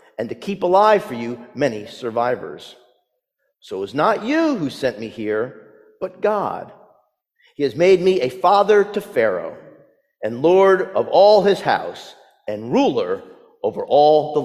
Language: English